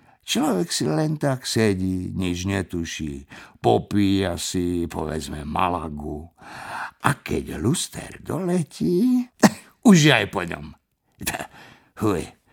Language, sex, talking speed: Slovak, male, 95 wpm